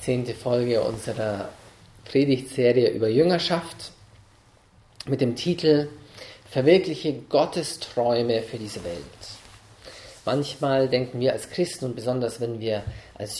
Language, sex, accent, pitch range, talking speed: English, male, German, 110-140 Hz, 110 wpm